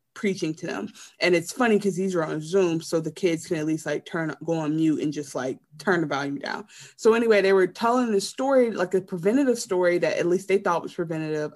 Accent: American